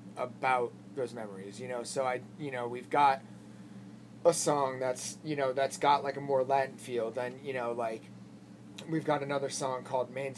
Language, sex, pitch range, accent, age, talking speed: English, male, 105-135 Hz, American, 30-49, 190 wpm